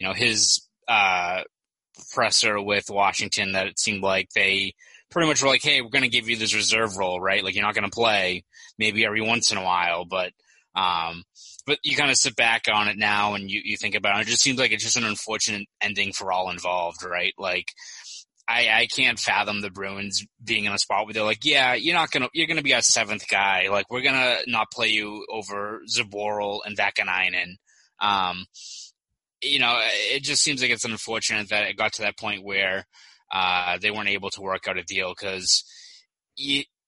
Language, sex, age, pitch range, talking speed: English, male, 20-39, 100-115 Hz, 215 wpm